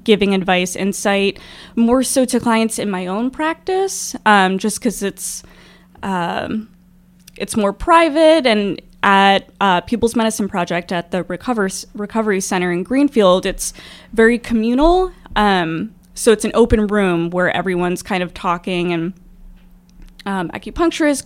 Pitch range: 185-230 Hz